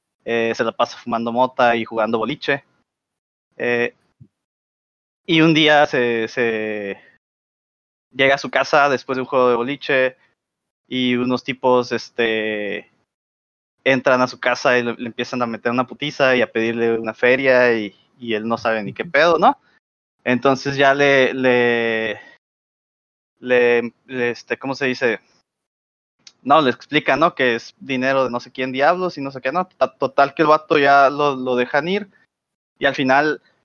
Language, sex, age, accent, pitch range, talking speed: Spanish, male, 20-39, Mexican, 120-140 Hz, 170 wpm